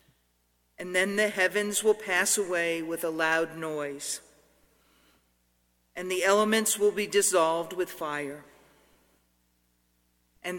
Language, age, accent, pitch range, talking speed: English, 50-69, American, 145-205 Hz, 115 wpm